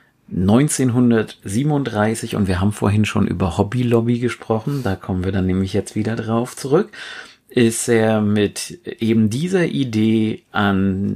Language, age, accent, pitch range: German, 40-59, German, 100-120 Hz